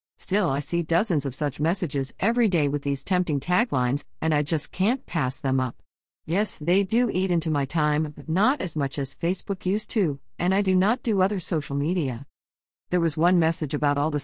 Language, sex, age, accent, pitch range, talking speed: English, female, 50-69, American, 145-185 Hz, 210 wpm